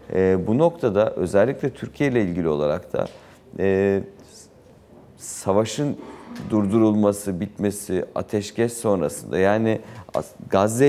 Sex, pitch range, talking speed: male, 90-110 Hz, 95 wpm